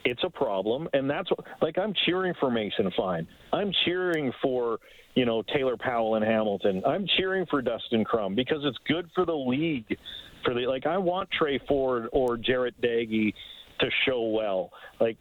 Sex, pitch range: male, 115-145 Hz